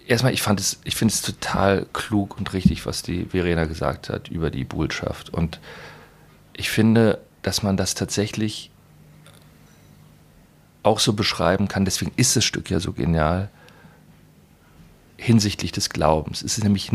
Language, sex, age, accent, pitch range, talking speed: German, male, 40-59, German, 90-120 Hz, 145 wpm